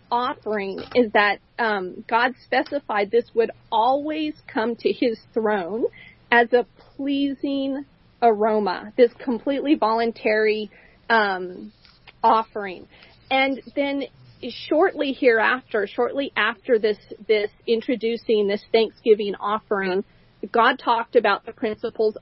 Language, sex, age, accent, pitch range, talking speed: English, female, 40-59, American, 215-270 Hz, 105 wpm